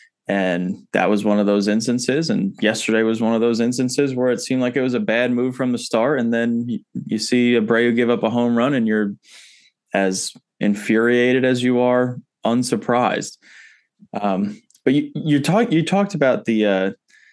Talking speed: 190 wpm